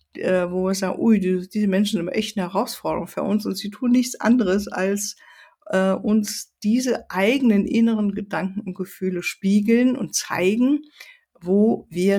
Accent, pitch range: German, 190-240 Hz